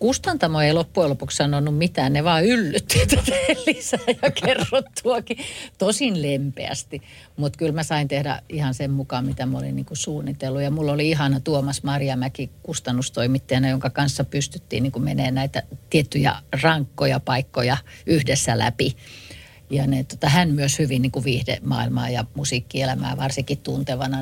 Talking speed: 140 wpm